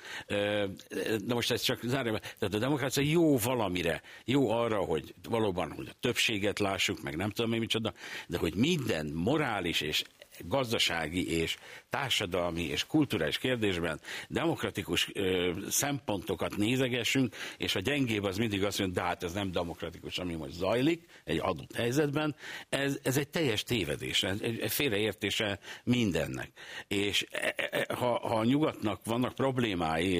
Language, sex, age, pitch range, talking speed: Hungarian, male, 60-79, 100-125 Hz, 140 wpm